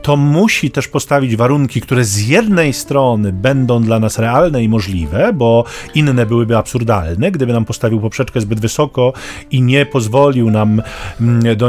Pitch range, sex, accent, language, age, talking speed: 115-150 Hz, male, native, Polish, 40-59, 155 wpm